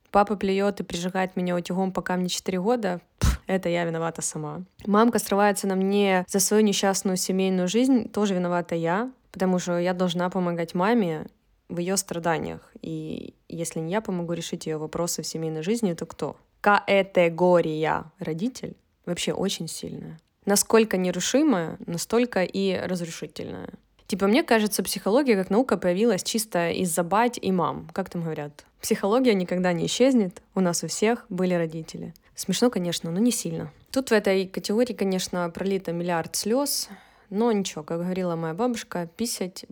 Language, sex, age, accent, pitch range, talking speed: Russian, female, 20-39, native, 170-215 Hz, 155 wpm